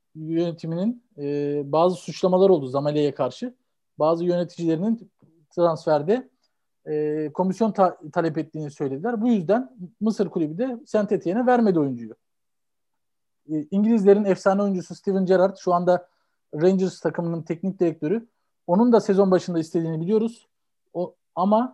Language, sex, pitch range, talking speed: Turkish, male, 155-200 Hz, 120 wpm